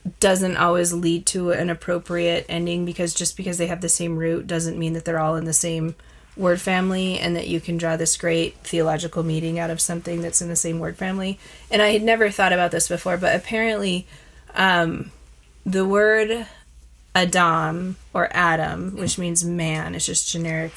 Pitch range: 160-180 Hz